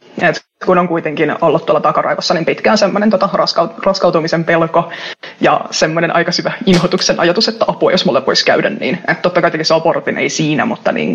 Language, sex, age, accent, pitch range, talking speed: Finnish, female, 20-39, native, 165-220 Hz, 190 wpm